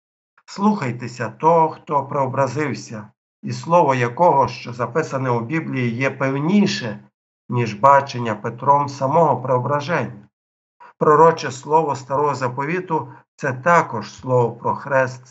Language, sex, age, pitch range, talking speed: Ukrainian, male, 50-69, 120-145 Hz, 110 wpm